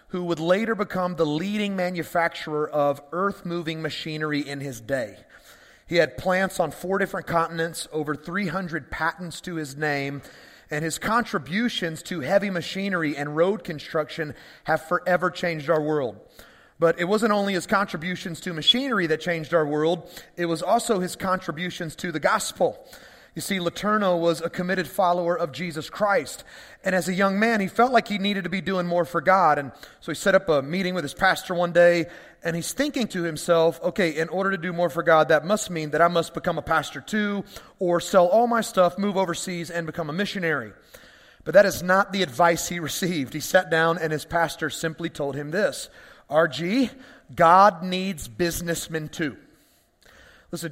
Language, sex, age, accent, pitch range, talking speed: English, male, 30-49, American, 160-195 Hz, 185 wpm